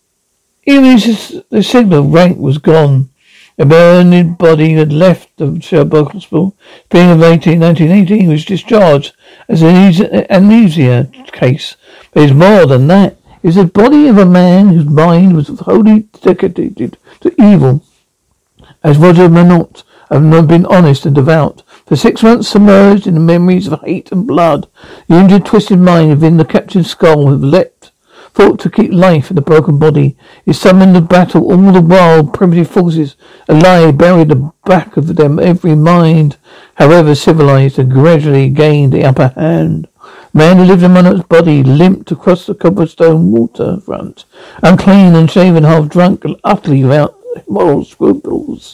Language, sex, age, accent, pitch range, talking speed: English, male, 60-79, British, 155-190 Hz, 155 wpm